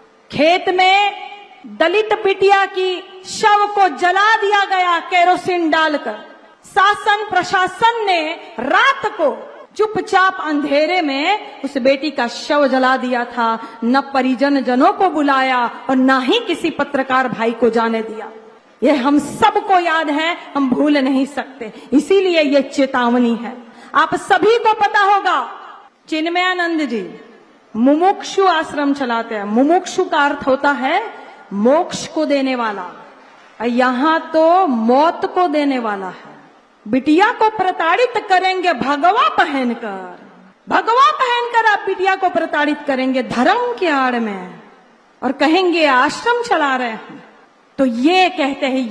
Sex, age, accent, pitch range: female, 40-59, native, 255-370 Hz